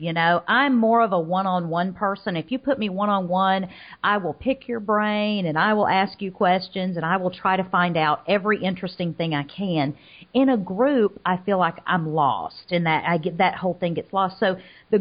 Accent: American